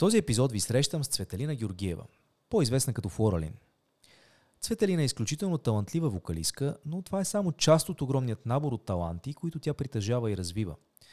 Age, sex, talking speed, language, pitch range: 30-49, male, 165 wpm, Bulgarian, 105-155 Hz